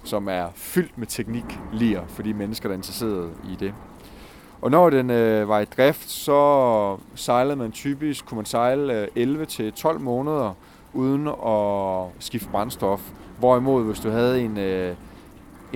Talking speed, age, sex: 155 wpm, 30-49, male